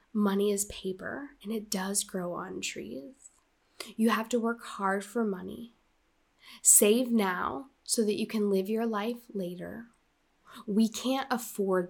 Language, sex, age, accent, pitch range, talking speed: English, female, 10-29, American, 195-235 Hz, 145 wpm